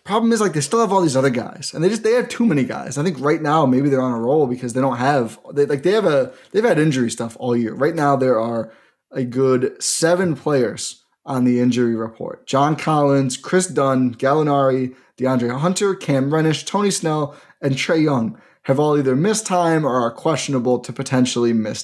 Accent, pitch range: American, 125-170 Hz